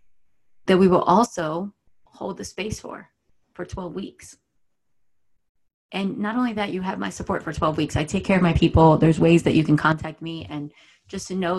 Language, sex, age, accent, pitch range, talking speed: English, female, 20-39, American, 155-200 Hz, 200 wpm